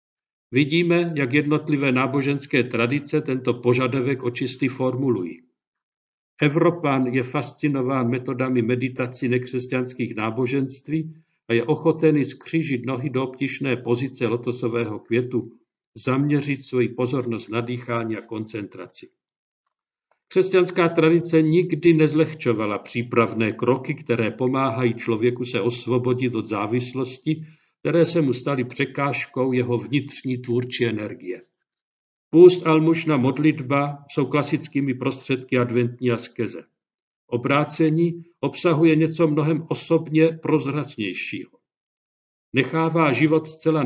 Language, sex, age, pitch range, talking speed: Czech, male, 50-69, 125-155 Hz, 100 wpm